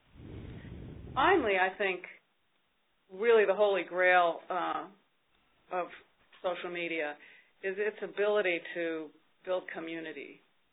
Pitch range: 165-195 Hz